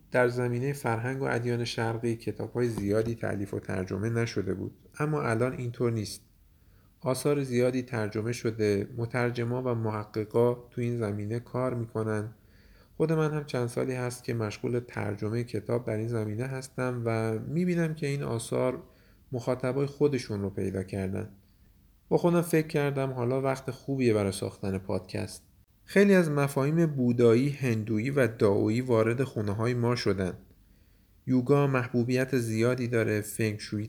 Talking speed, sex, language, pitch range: 140 wpm, male, Persian, 105-130 Hz